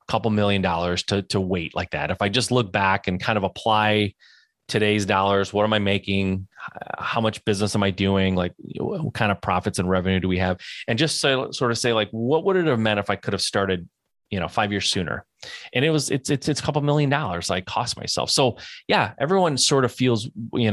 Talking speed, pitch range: 235 wpm, 95-115 Hz